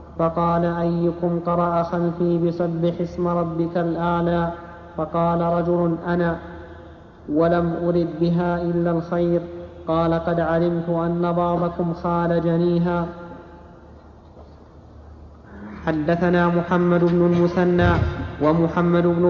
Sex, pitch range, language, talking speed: male, 170-175 Hz, Arabic, 90 wpm